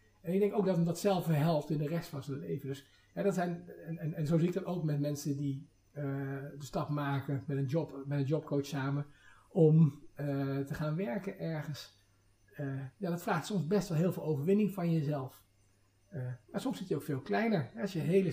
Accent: Dutch